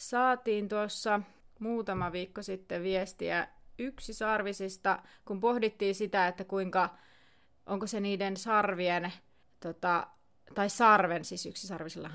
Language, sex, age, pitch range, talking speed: Finnish, female, 30-49, 185-225 Hz, 110 wpm